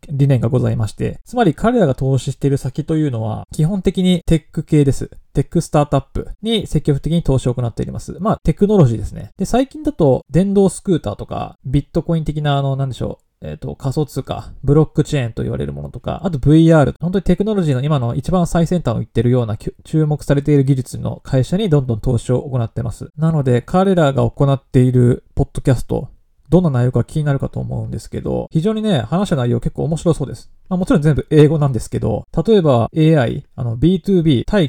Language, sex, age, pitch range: Japanese, male, 20-39, 125-160 Hz